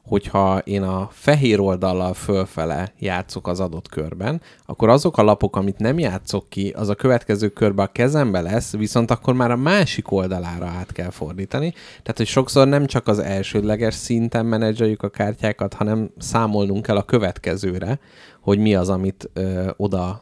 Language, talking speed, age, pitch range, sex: Hungarian, 165 wpm, 30-49, 95-120 Hz, male